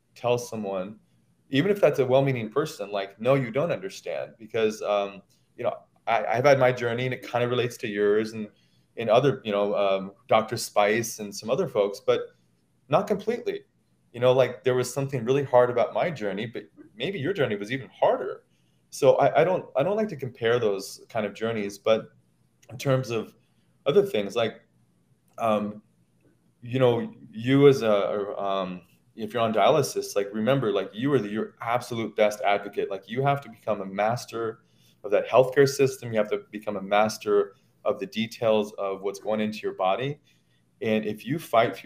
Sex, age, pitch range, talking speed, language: male, 20-39, 100-130 Hz, 190 wpm, English